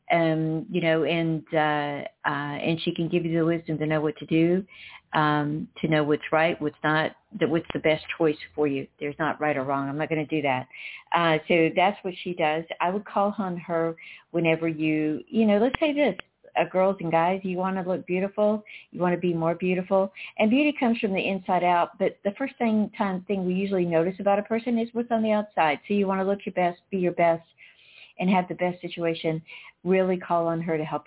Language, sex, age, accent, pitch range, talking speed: English, female, 50-69, American, 155-185 Hz, 235 wpm